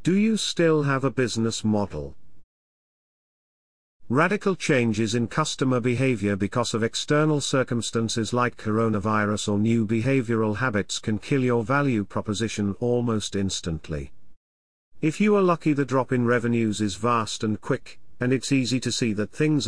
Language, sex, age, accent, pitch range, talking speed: English, male, 50-69, British, 105-145 Hz, 145 wpm